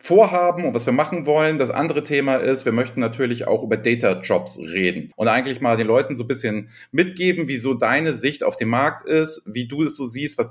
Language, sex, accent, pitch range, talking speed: German, male, German, 120-160 Hz, 235 wpm